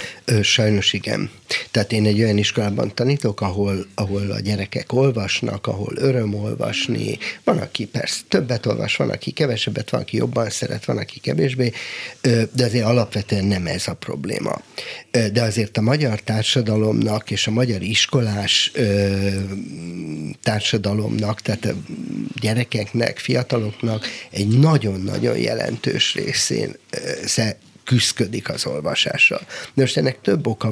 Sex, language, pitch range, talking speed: male, Hungarian, 105-130 Hz, 120 wpm